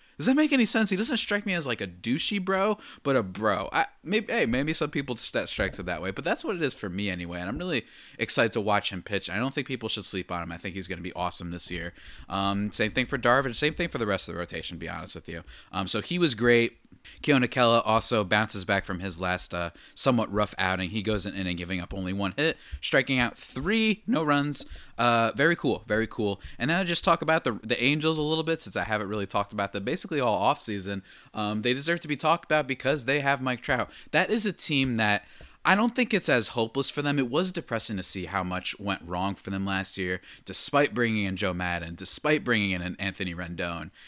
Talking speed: 255 wpm